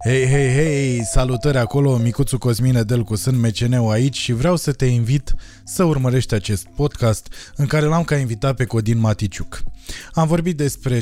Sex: male